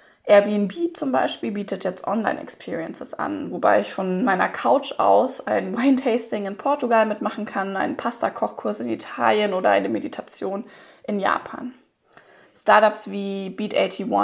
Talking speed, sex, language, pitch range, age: 130 wpm, female, German, 200-255 Hz, 20-39